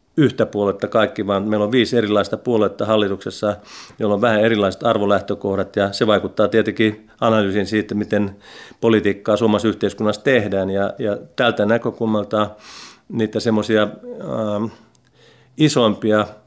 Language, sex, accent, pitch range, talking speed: Finnish, male, native, 100-120 Hz, 115 wpm